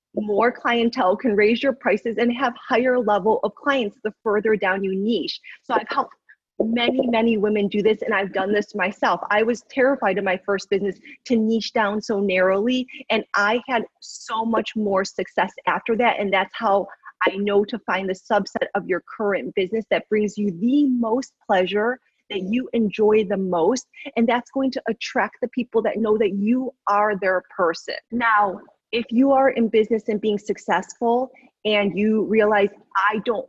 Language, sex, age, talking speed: English, female, 30-49, 185 wpm